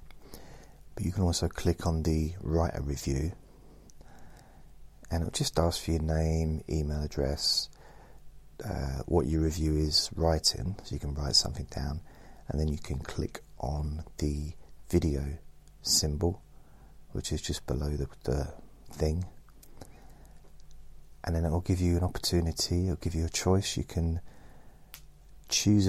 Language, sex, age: English, male, 30-49